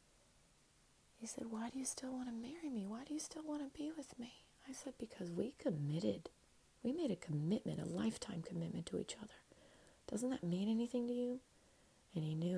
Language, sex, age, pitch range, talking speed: English, female, 30-49, 165-230 Hz, 200 wpm